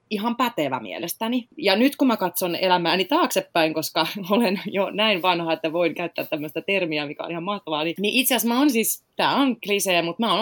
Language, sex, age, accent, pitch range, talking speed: Finnish, female, 30-49, native, 150-205 Hz, 205 wpm